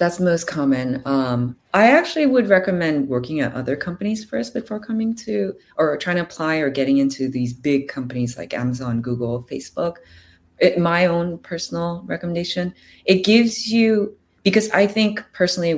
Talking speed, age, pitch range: 165 wpm, 20-39, 135-185 Hz